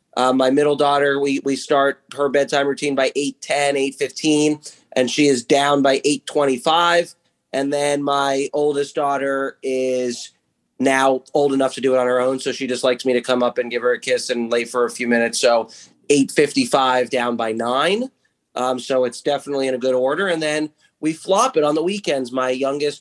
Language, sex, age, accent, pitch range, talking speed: English, male, 30-49, American, 130-155 Hz, 200 wpm